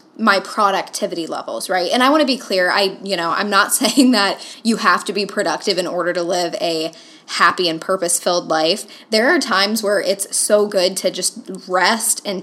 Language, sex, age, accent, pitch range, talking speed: English, female, 10-29, American, 185-220 Hz, 210 wpm